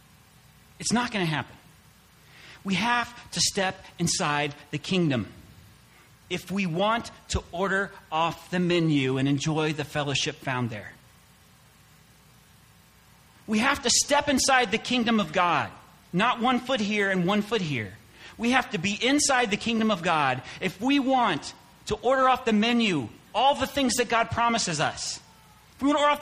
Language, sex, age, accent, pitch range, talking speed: English, male, 40-59, American, 150-230 Hz, 165 wpm